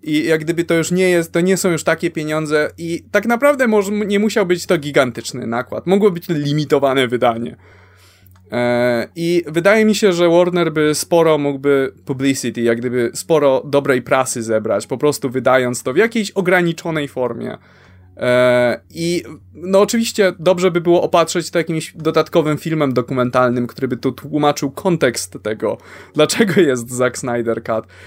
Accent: native